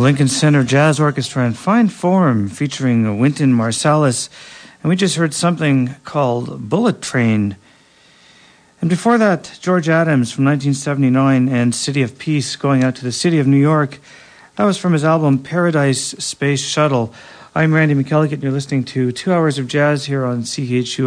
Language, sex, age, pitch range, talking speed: English, male, 50-69, 125-160 Hz, 170 wpm